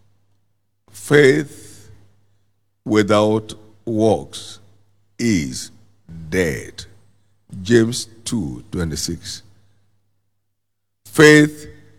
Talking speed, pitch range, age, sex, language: 50 wpm, 100-115 Hz, 50-69, male, English